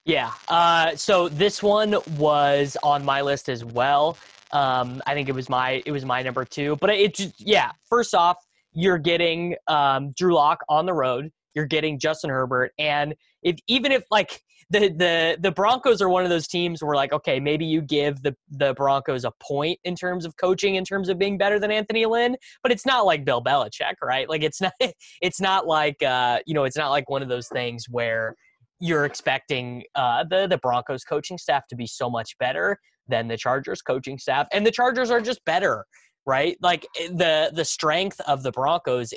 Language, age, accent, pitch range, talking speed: English, 20-39, American, 130-180 Hz, 205 wpm